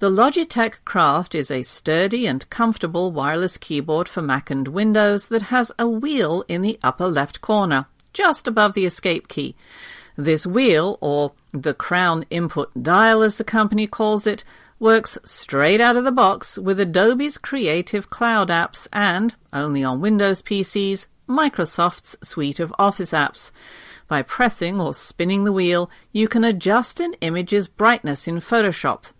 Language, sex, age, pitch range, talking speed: English, female, 50-69, 160-225 Hz, 155 wpm